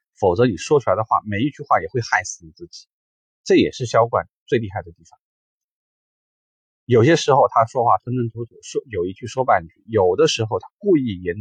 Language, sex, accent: Chinese, male, native